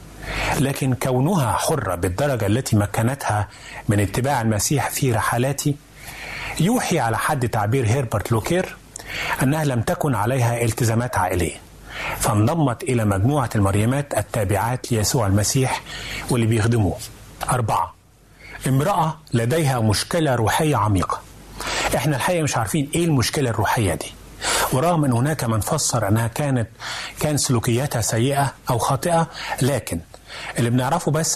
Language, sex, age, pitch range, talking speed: Arabic, male, 30-49, 110-145 Hz, 120 wpm